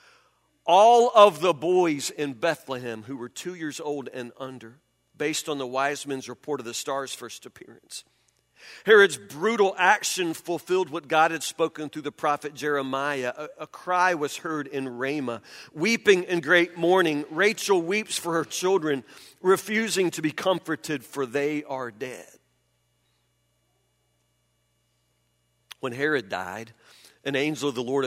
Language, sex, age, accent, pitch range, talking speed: English, male, 50-69, American, 130-170 Hz, 145 wpm